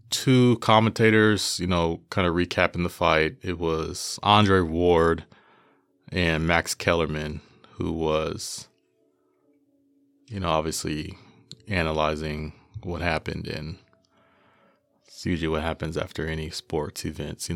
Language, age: English, 30-49